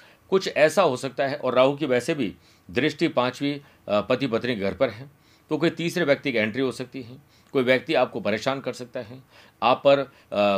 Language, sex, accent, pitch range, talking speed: Hindi, male, native, 115-150 Hz, 205 wpm